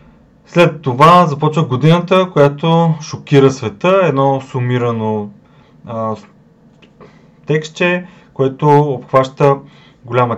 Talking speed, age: 80 wpm, 20-39